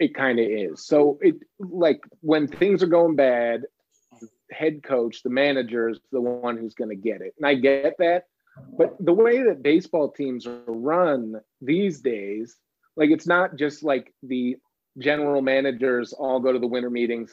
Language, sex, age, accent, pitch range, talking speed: English, male, 30-49, American, 120-150 Hz, 180 wpm